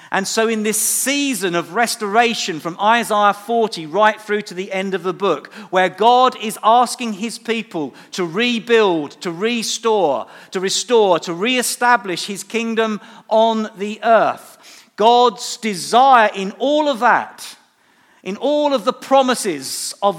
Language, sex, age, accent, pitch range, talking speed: English, male, 50-69, British, 200-245 Hz, 145 wpm